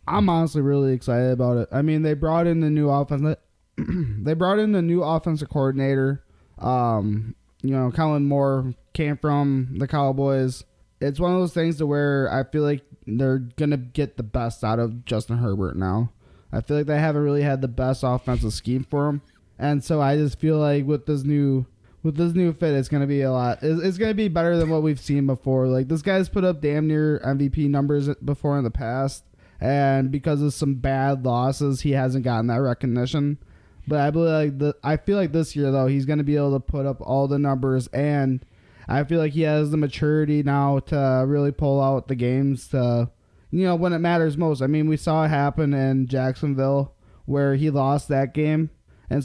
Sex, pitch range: male, 130-150 Hz